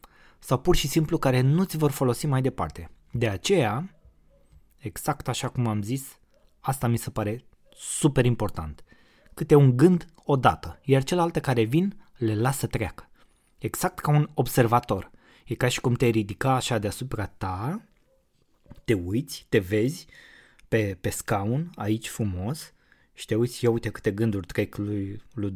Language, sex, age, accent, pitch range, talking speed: Romanian, male, 20-39, native, 105-130 Hz, 155 wpm